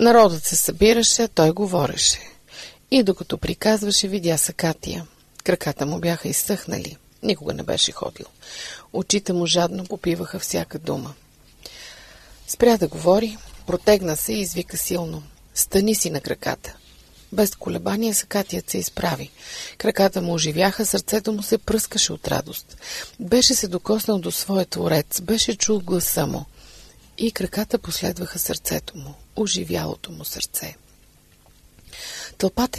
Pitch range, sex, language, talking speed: 170-215 Hz, female, Bulgarian, 125 wpm